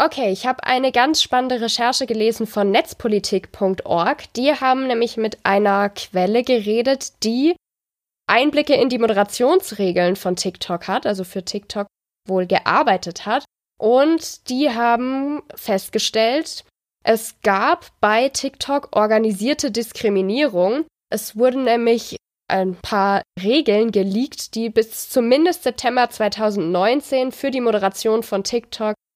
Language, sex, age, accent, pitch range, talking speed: German, female, 20-39, German, 205-260 Hz, 120 wpm